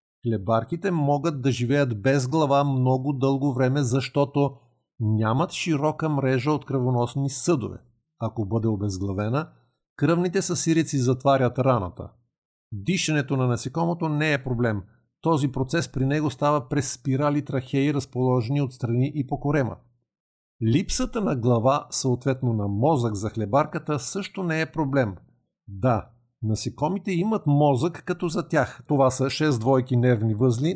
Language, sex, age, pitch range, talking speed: Bulgarian, male, 50-69, 125-160 Hz, 135 wpm